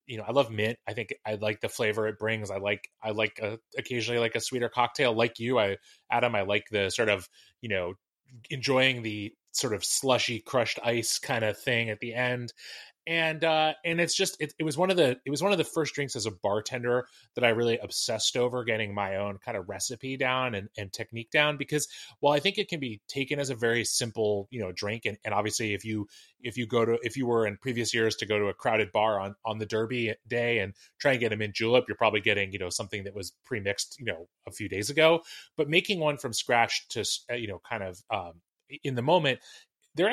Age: 20-39